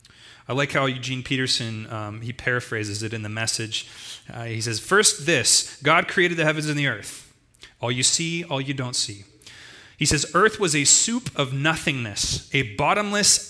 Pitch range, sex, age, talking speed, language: 115-155 Hz, male, 30-49, 180 wpm, English